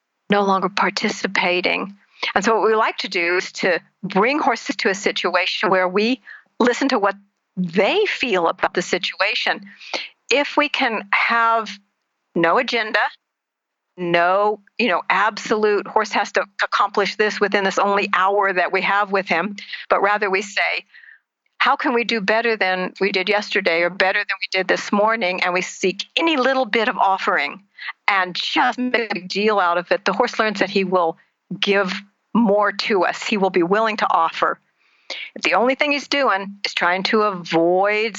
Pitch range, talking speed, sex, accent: 185-225 Hz, 180 wpm, female, American